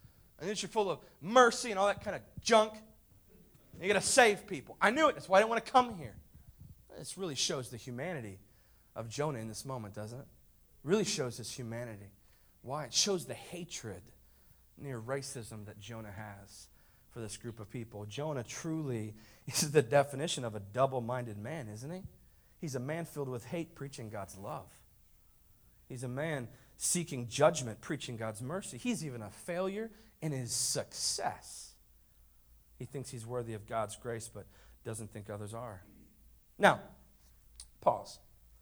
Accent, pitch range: American, 105-160 Hz